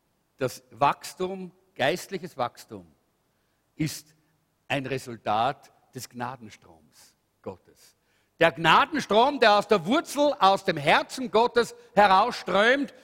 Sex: male